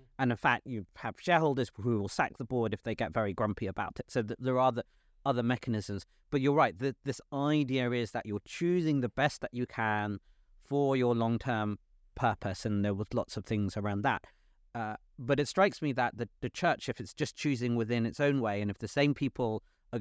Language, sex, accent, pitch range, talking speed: English, male, British, 105-130 Hz, 220 wpm